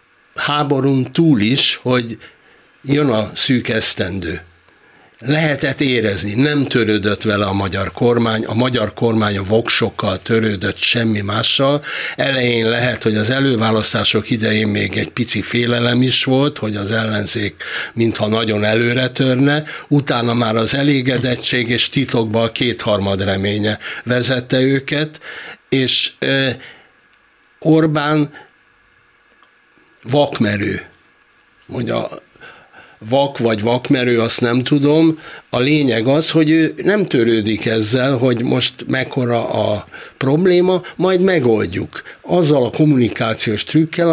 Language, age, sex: Hungarian, 60-79, male